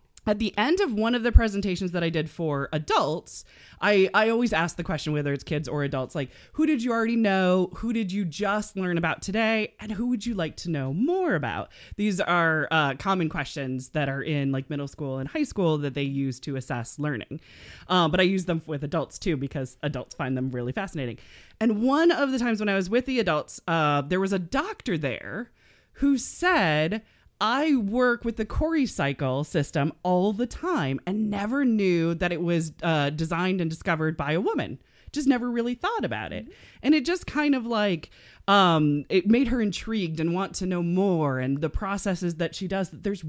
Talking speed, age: 210 wpm, 20-39